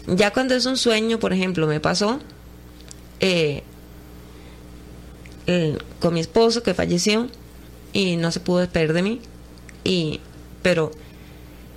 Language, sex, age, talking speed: Spanish, female, 30-49, 125 wpm